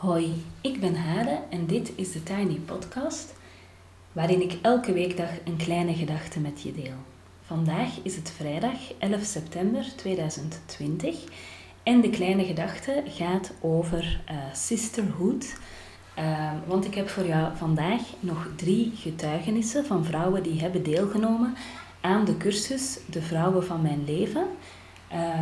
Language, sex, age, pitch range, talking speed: Dutch, female, 30-49, 160-195 Hz, 140 wpm